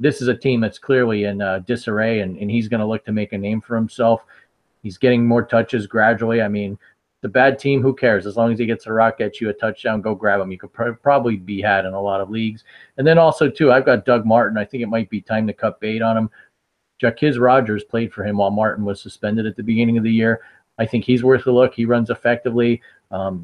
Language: English